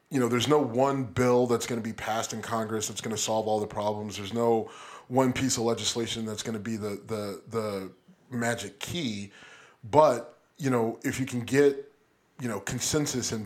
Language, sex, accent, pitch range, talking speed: English, male, American, 110-130 Hz, 205 wpm